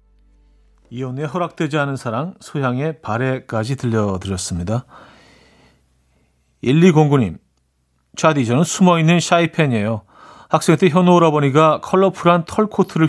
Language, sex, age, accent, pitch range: Korean, male, 40-59, native, 115-170 Hz